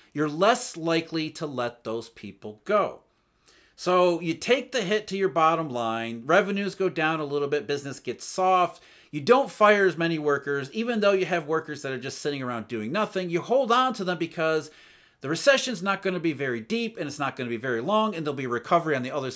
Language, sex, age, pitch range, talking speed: English, male, 40-59, 135-195 Hz, 220 wpm